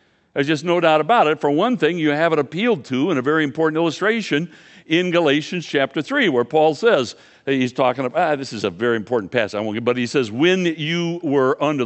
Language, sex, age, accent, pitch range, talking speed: English, male, 60-79, American, 125-165 Hz, 235 wpm